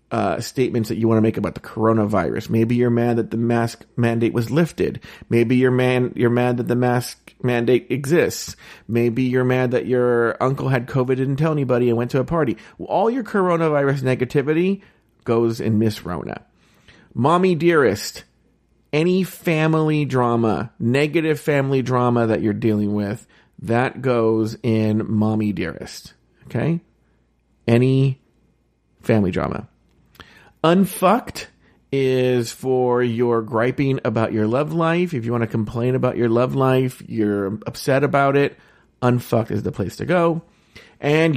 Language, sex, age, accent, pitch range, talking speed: English, male, 40-59, American, 115-145 Hz, 150 wpm